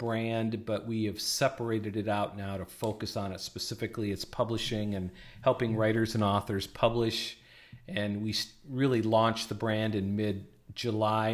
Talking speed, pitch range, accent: 155 wpm, 100-115 Hz, American